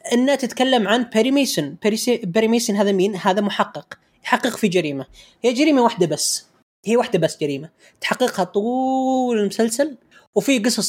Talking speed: 140 wpm